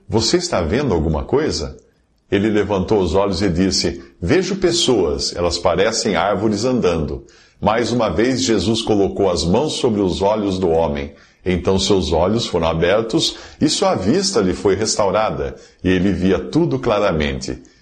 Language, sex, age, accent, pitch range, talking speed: Portuguese, male, 50-69, Brazilian, 90-125 Hz, 150 wpm